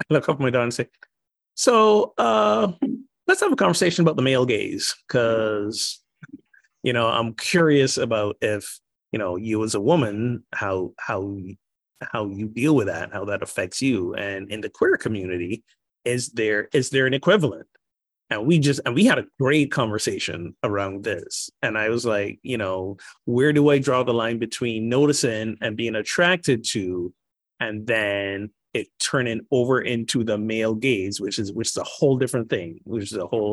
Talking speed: 185 wpm